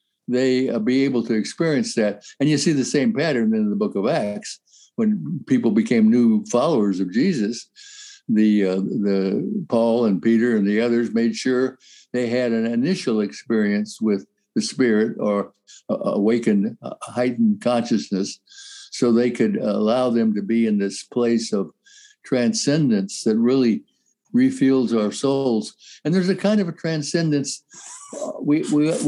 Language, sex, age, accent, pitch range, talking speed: English, male, 60-79, American, 115-185 Hz, 155 wpm